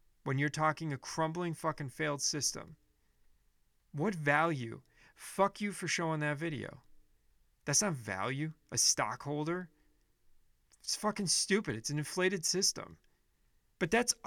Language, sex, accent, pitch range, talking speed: English, male, American, 145-185 Hz, 125 wpm